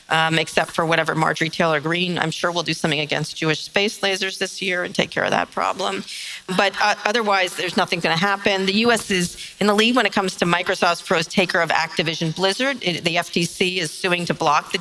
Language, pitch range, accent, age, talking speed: English, 170-205 Hz, American, 40-59, 225 wpm